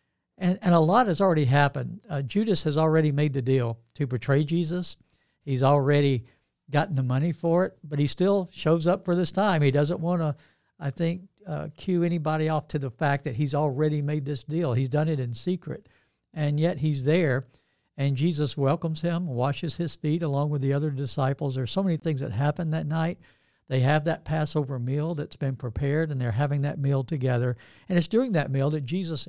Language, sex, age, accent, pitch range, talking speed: English, male, 60-79, American, 135-165 Hz, 210 wpm